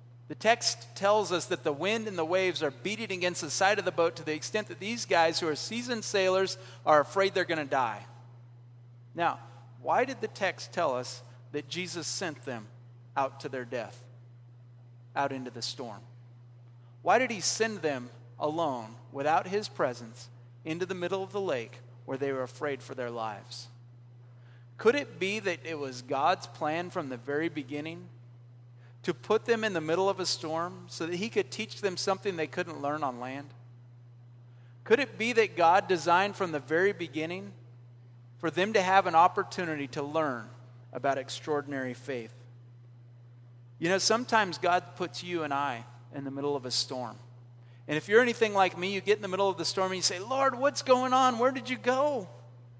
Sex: male